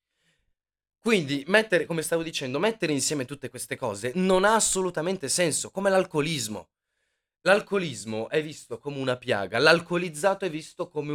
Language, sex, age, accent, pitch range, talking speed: Italian, male, 30-49, native, 125-180 Hz, 140 wpm